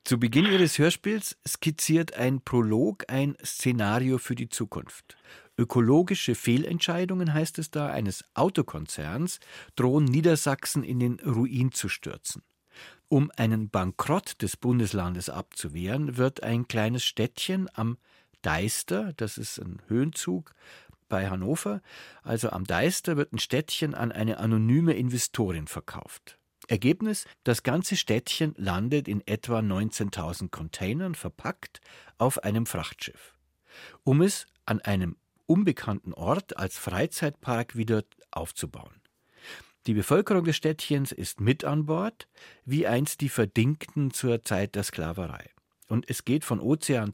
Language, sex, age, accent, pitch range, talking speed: German, male, 50-69, German, 110-150 Hz, 125 wpm